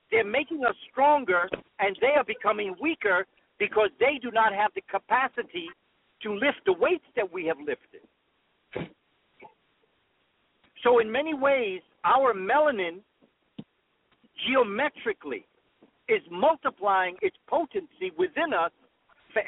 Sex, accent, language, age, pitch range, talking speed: male, American, English, 50-69, 220-310 Hz, 115 wpm